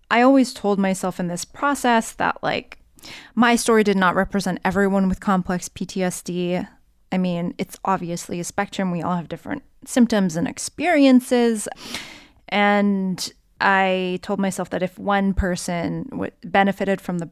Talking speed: 145 wpm